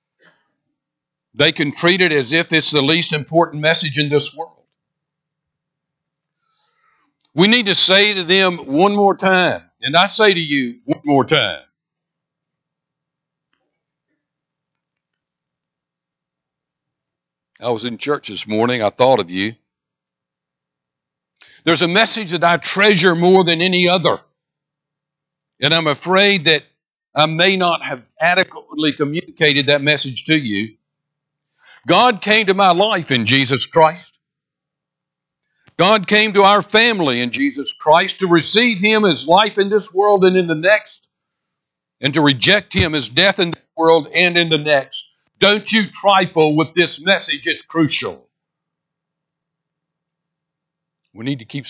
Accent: American